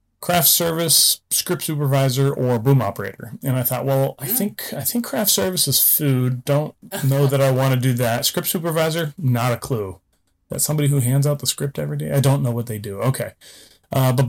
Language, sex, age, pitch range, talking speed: English, male, 30-49, 115-145 Hz, 210 wpm